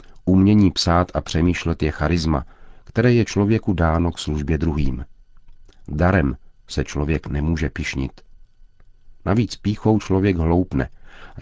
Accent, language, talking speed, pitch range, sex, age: native, Czech, 120 wpm, 75-90 Hz, male, 50-69